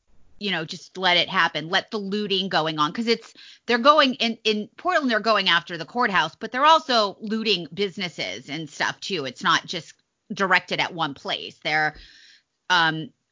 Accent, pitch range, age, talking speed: American, 165-225 Hz, 30-49, 180 wpm